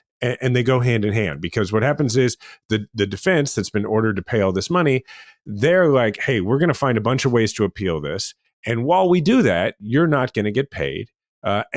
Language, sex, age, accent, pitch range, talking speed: English, male, 30-49, American, 105-140 Hz, 240 wpm